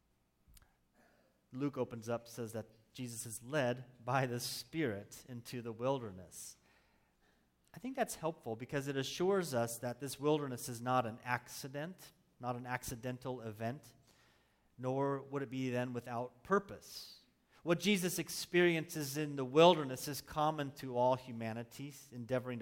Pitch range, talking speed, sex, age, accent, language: 115-145 Hz, 140 wpm, male, 30-49, American, English